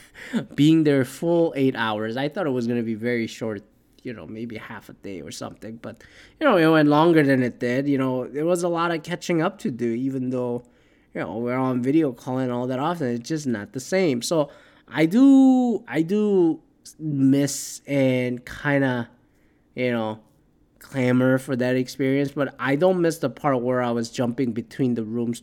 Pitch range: 120-145 Hz